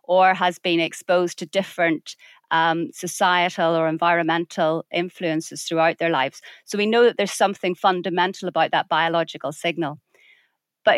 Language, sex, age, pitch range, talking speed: English, female, 30-49, 170-210 Hz, 140 wpm